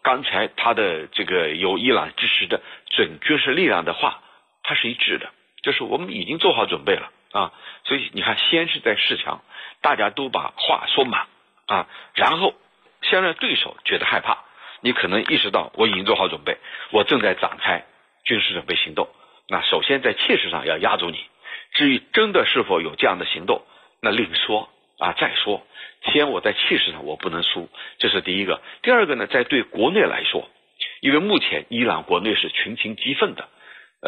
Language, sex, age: Chinese, male, 60-79